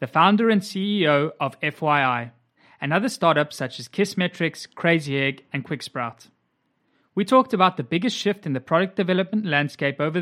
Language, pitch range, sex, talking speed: English, 135-190 Hz, male, 165 wpm